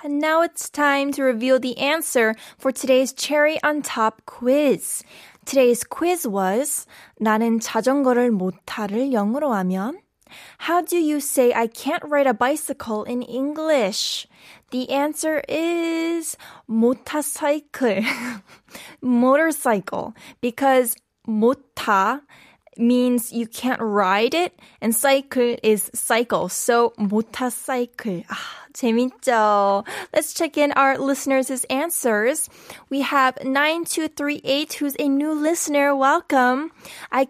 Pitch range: 235-295 Hz